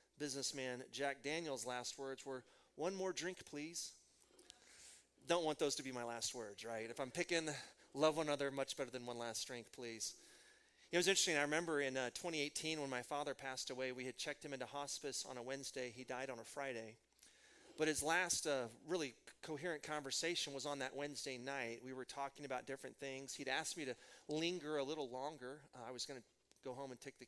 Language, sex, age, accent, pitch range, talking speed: English, male, 30-49, American, 125-160 Hz, 210 wpm